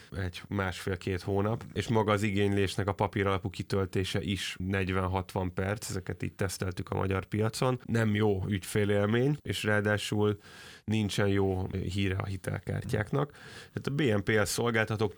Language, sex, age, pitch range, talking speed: Hungarian, male, 20-39, 95-105 Hz, 135 wpm